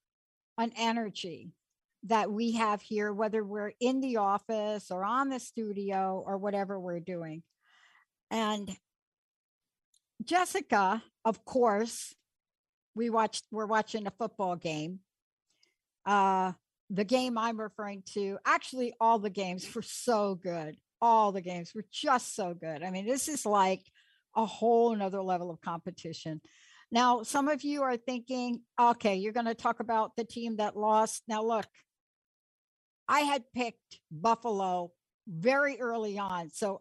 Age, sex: 60-79, female